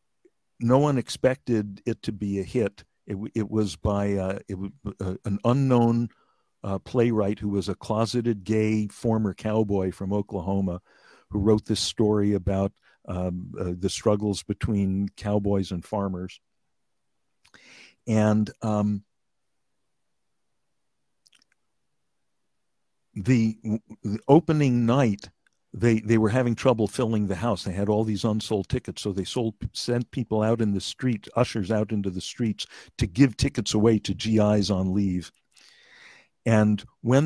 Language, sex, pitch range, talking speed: English, male, 100-125 Hz, 140 wpm